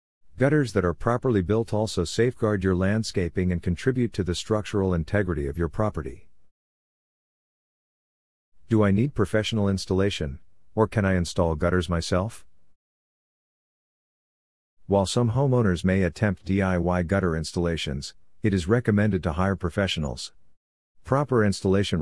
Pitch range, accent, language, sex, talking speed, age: 85-105 Hz, American, English, male, 125 wpm, 50-69